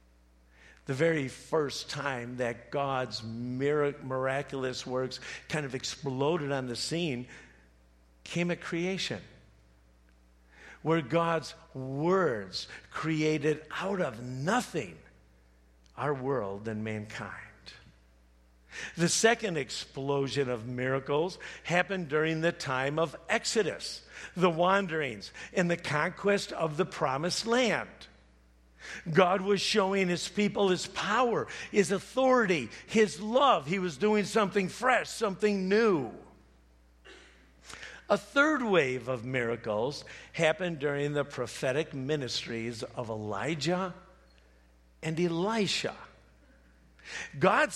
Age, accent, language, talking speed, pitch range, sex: 50-69, American, English, 100 wpm, 115-185 Hz, male